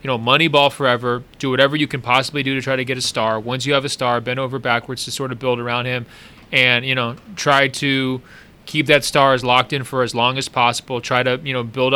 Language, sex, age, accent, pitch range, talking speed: English, male, 30-49, American, 125-150 Hz, 260 wpm